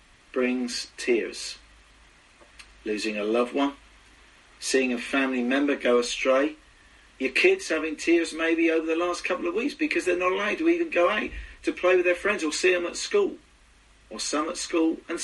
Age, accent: 40-59, British